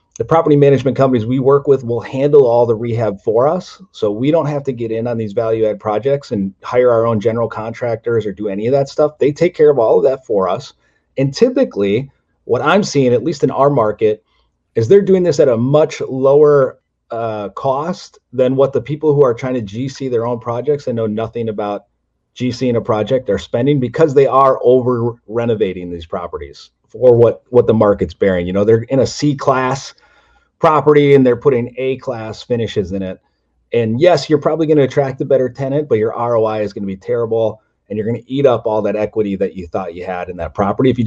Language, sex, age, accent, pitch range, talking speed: English, male, 30-49, American, 105-140 Hz, 225 wpm